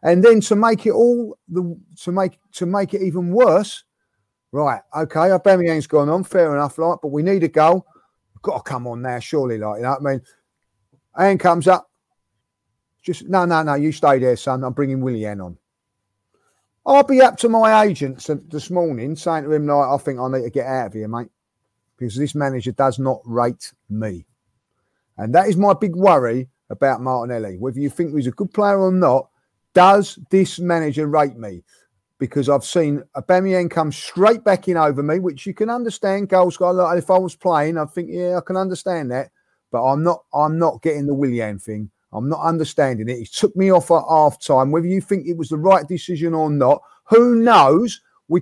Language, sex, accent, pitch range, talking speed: English, male, British, 130-180 Hz, 205 wpm